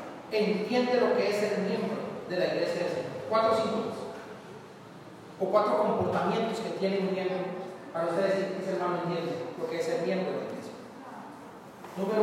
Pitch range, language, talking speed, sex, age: 195-245 Hz, Spanish, 170 wpm, male, 40-59